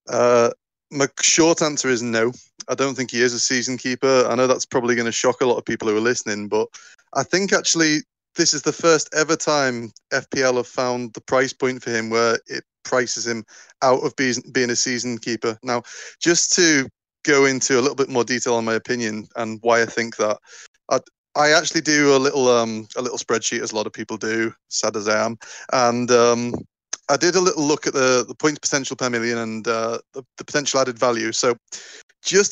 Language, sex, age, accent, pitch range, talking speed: English, male, 30-49, British, 120-150 Hz, 220 wpm